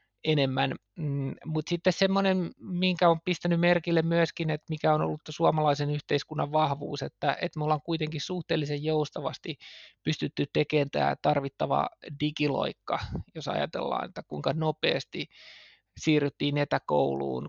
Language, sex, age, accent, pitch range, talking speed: Finnish, male, 20-39, native, 140-165 Hz, 115 wpm